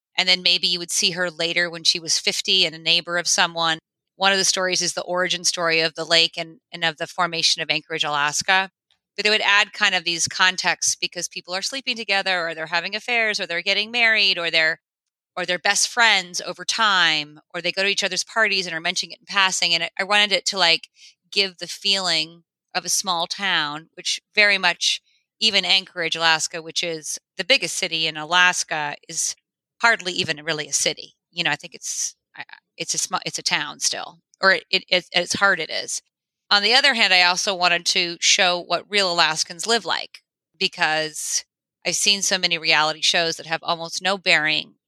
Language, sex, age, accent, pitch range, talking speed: English, female, 30-49, American, 165-190 Hz, 210 wpm